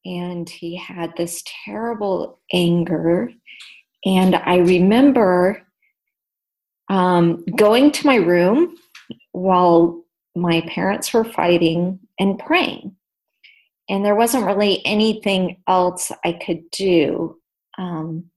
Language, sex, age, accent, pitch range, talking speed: English, female, 40-59, American, 170-230 Hz, 100 wpm